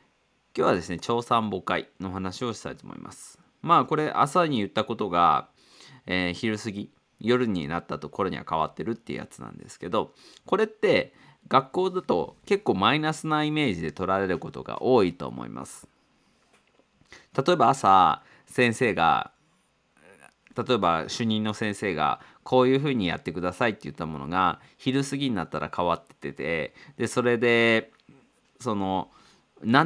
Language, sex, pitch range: Japanese, male, 90-135 Hz